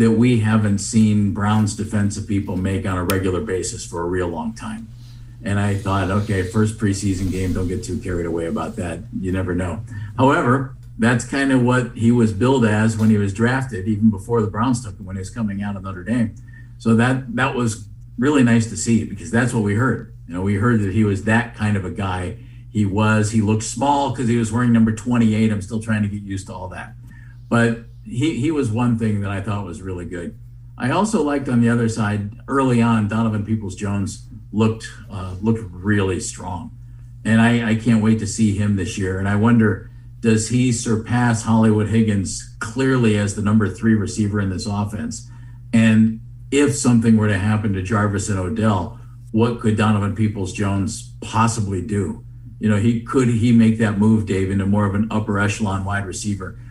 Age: 50-69